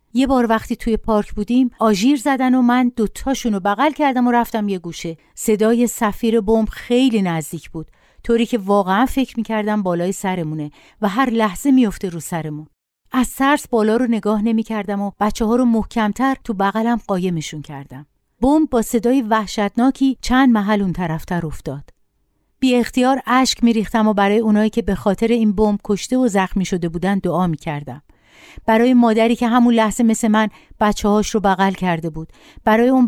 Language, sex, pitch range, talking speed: Persian, female, 190-240 Hz, 170 wpm